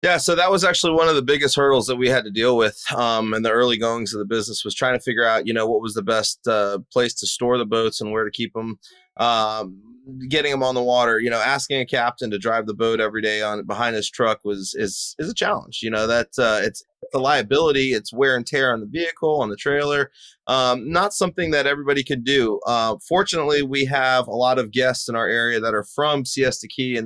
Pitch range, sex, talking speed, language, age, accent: 115-135 Hz, male, 250 wpm, English, 20-39, American